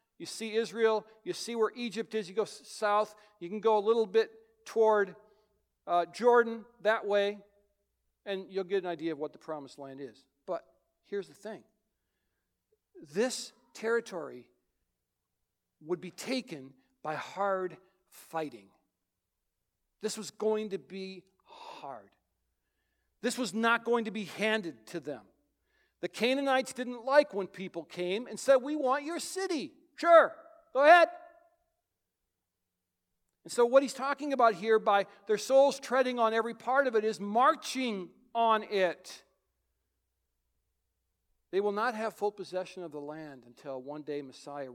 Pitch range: 165-230 Hz